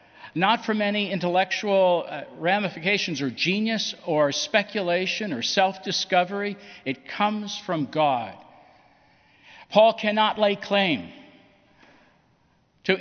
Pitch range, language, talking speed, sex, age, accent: 150-205 Hz, English, 95 wpm, male, 60-79, American